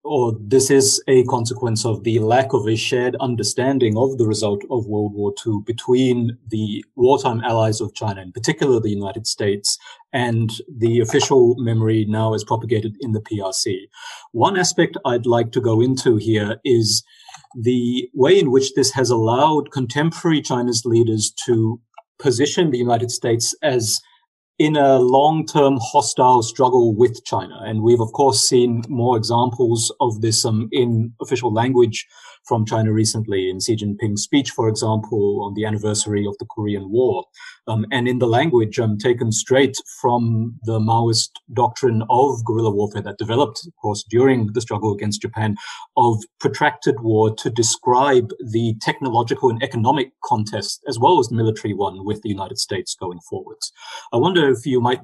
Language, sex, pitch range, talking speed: English, male, 110-130 Hz, 165 wpm